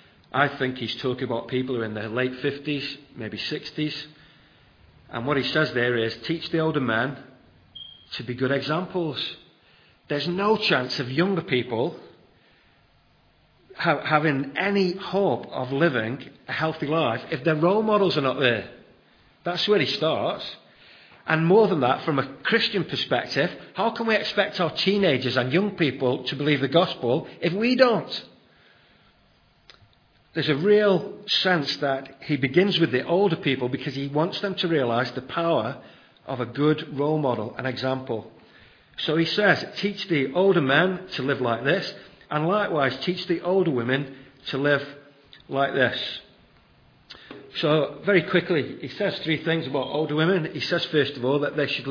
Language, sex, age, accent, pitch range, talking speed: English, male, 40-59, British, 130-175 Hz, 165 wpm